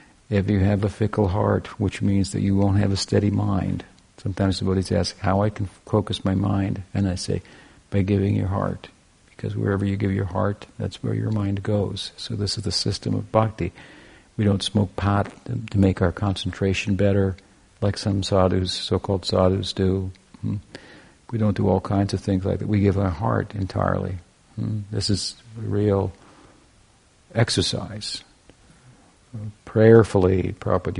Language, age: English, 50-69